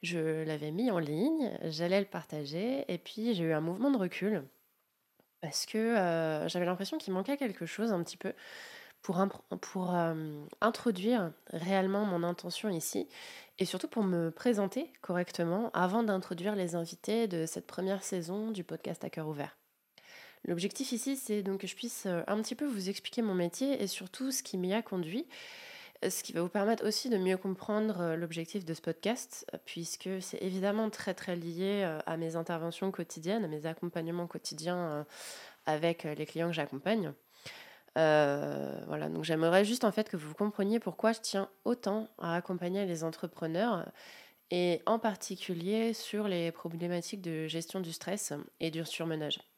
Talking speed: 170 wpm